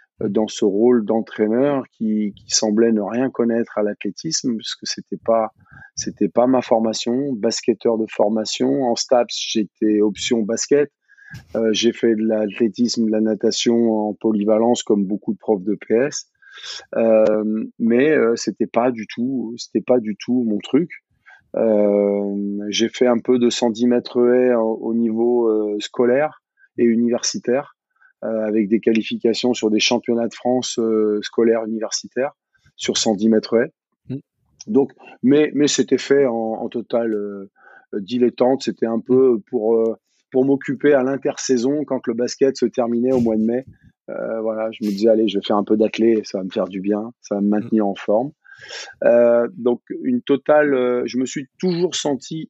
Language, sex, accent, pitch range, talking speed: French, male, French, 110-125 Hz, 170 wpm